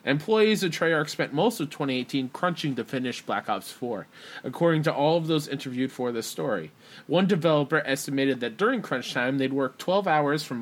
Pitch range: 130-160 Hz